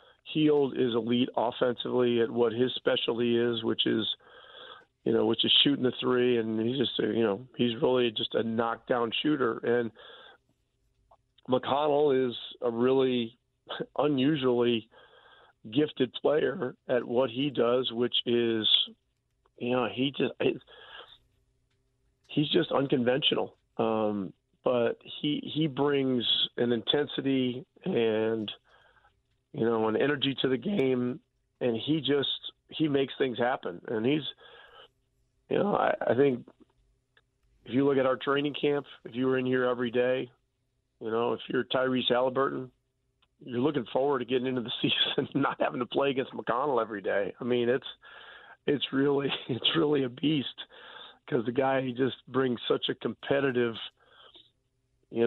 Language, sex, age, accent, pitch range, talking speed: English, male, 40-59, American, 120-135 Hz, 145 wpm